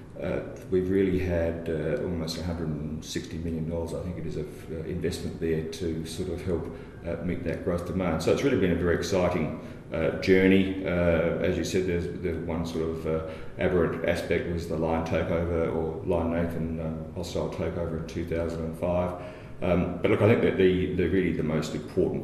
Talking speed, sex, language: 190 wpm, male, English